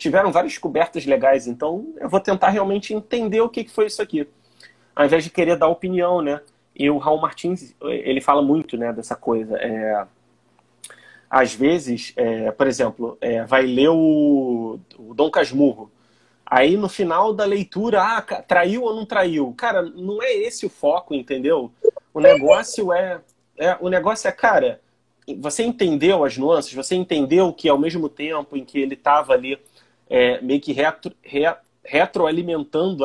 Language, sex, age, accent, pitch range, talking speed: Portuguese, male, 30-49, Brazilian, 140-190 Hz, 165 wpm